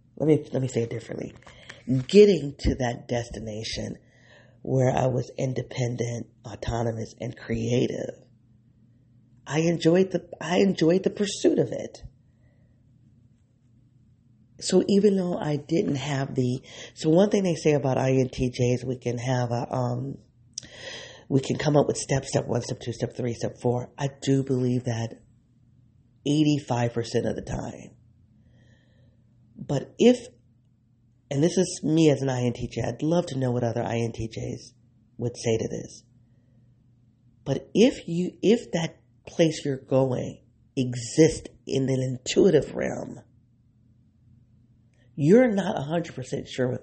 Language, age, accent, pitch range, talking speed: English, 40-59, American, 120-140 Hz, 140 wpm